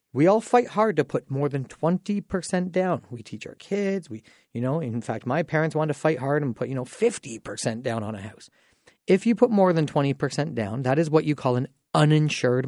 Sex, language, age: male, English, 40-59